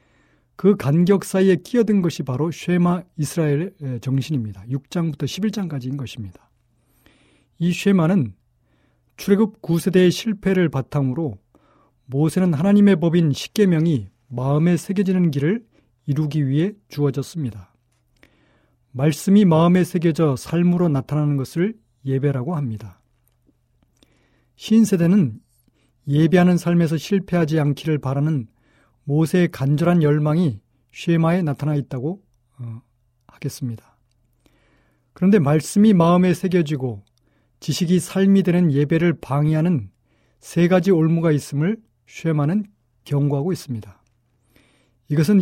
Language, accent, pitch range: Korean, native, 125-175 Hz